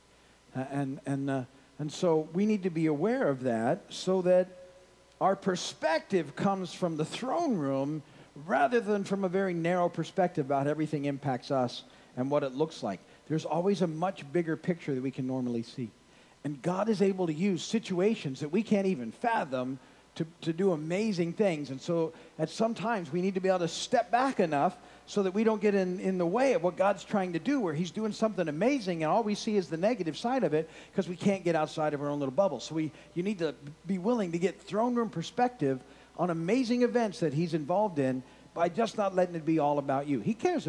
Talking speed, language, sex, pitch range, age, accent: 220 wpm, English, male, 150-195 Hz, 50-69, American